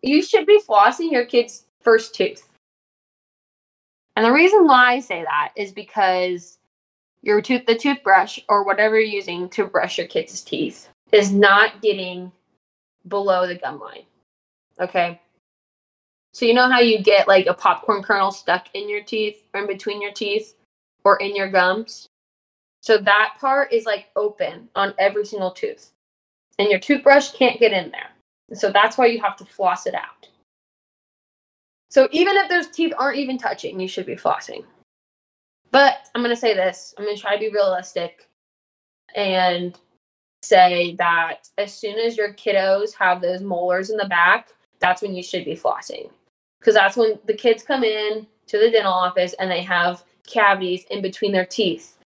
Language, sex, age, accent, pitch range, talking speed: English, female, 10-29, American, 185-235 Hz, 175 wpm